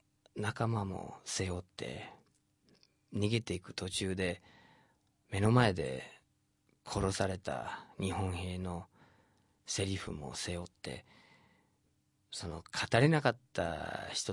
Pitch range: 90-110 Hz